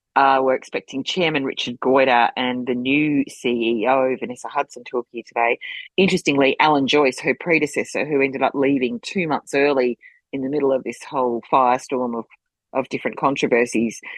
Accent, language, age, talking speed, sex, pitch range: Australian, English, 30-49, 160 wpm, female, 125-150 Hz